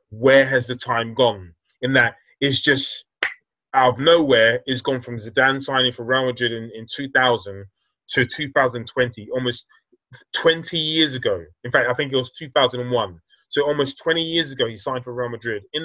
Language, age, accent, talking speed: English, 20-39, British, 180 wpm